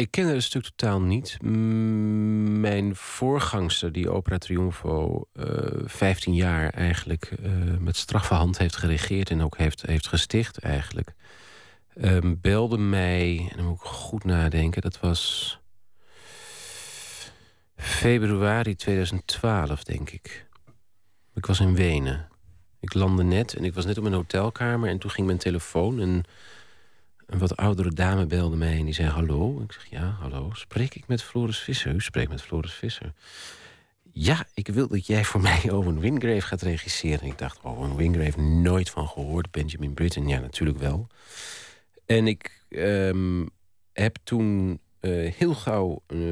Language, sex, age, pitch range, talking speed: Dutch, male, 40-59, 85-110 Hz, 155 wpm